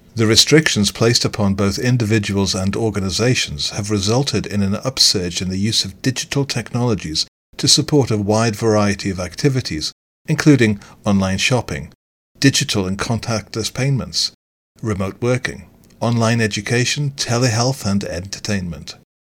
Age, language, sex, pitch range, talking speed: 40-59, English, male, 95-135 Hz, 125 wpm